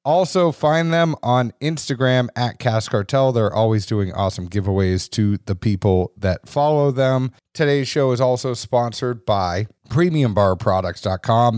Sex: male